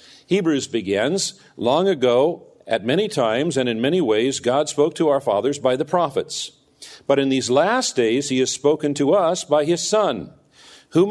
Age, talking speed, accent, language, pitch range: 50-69, 180 wpm, American, English, 125-175 Hz